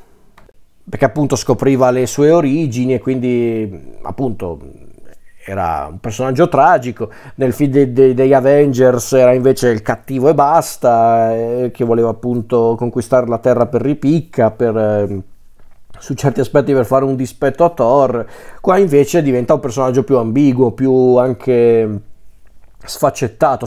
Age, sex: 30-49, male